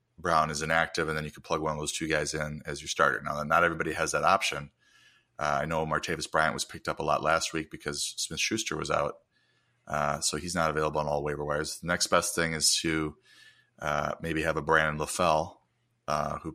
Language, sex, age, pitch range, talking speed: English, male, 30-49, 75-80 Hz, 230 wpm